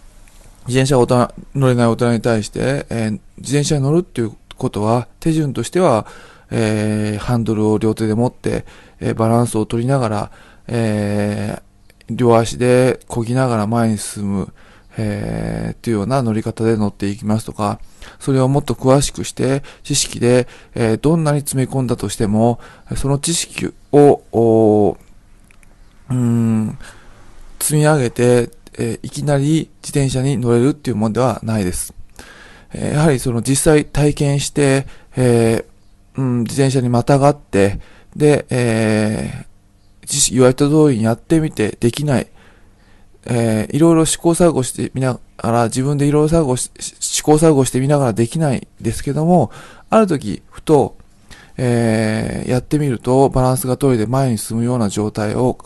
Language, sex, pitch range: Japanese, male, 110-135 Hz